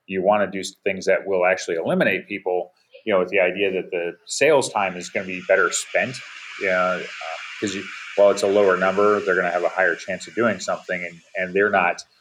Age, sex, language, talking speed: 30-49, male, English, 235 wpm